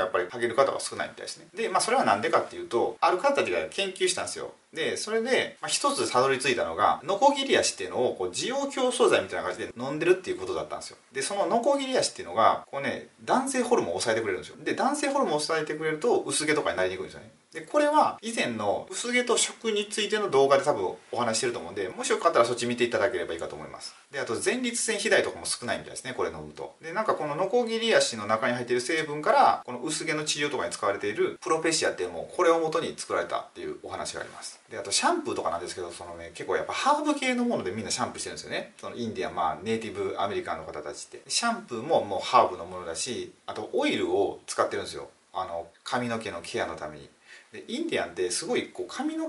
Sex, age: male, 30-49